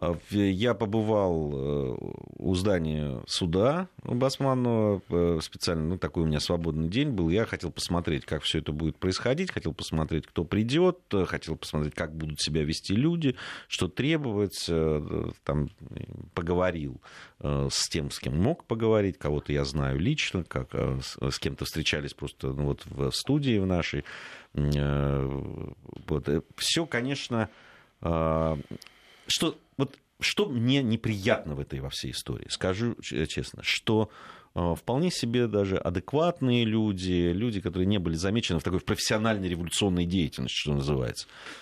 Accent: native